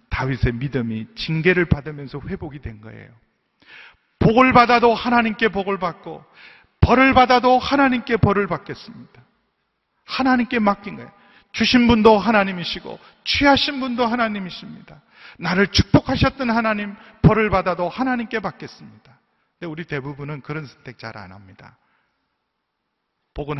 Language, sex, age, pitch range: Korean, male, 40-59, 135-195 Hz